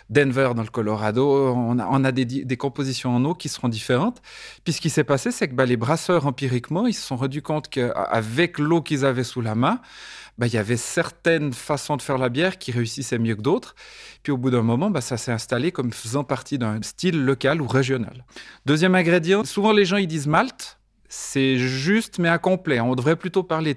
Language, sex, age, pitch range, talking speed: French, male, 30-49, 125-165 Hz, 220 wpm